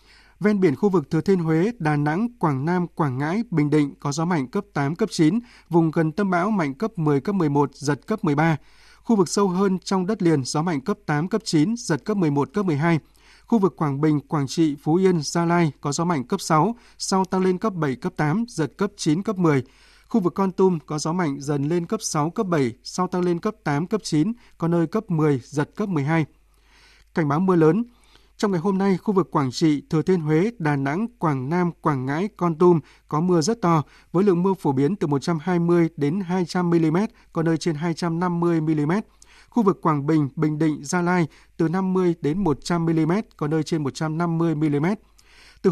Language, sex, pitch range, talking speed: Vietnamese, male, 155-190 Hz, 220 wpm